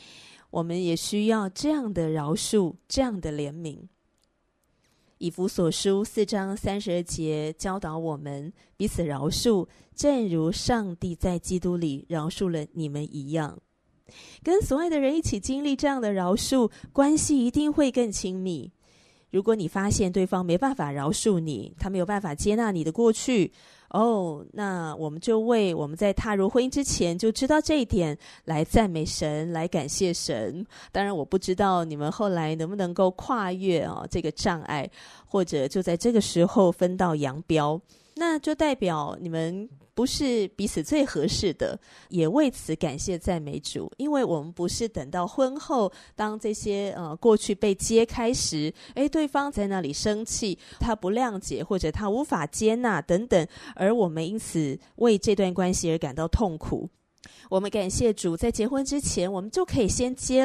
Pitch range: 165-225 Hz